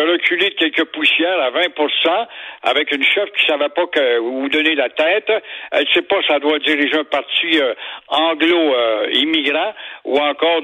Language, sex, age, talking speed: French, male, 60-79, 180 wpm